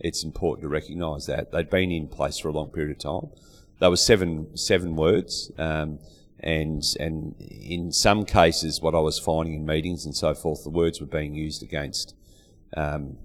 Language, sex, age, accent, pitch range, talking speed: English, male, 40-59, Australian, 75-85 Hz, 190 wpm